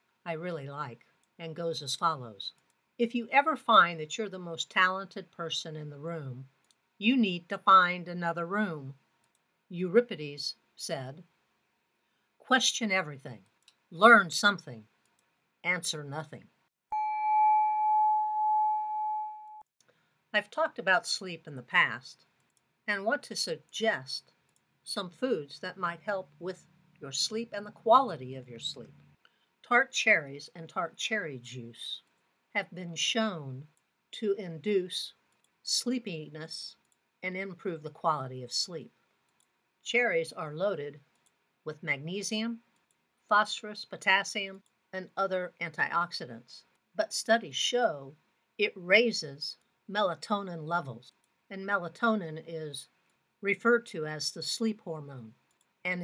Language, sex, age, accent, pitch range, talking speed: English, female, 60-79, American, 155-215 Hz, 110 wpm